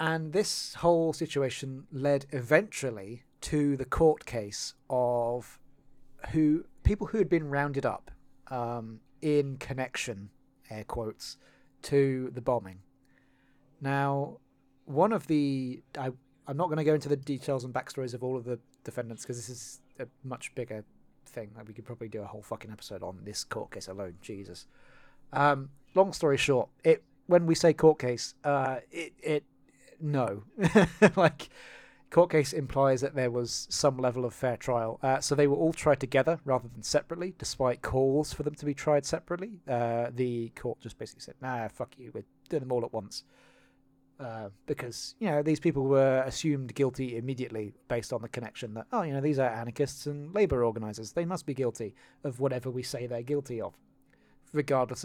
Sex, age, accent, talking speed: male, 30-49, British, 175 wpm